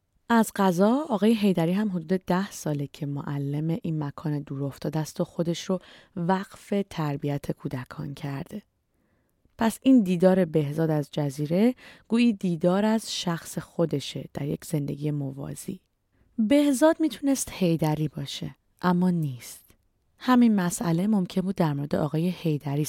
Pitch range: 150-210 Hz